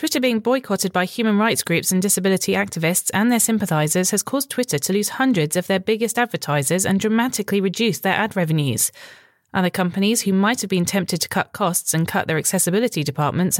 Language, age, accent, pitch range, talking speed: English, 30-49, British, 175-215 Hz, 195 wpm